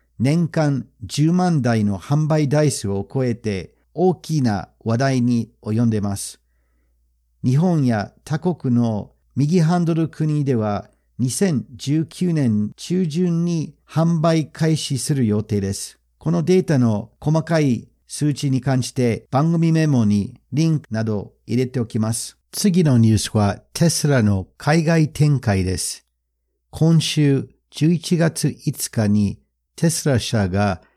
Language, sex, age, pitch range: Japanese, male, 50-69, 105-150 Hz